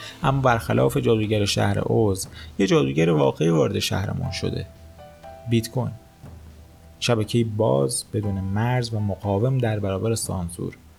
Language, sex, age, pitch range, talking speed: Persian, male, 30-49, 100-140 Hz, 120 wpm